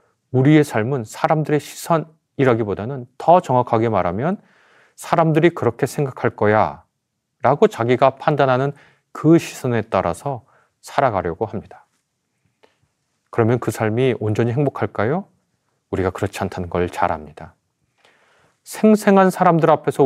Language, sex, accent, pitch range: Korean, male, native, 110-145 Hz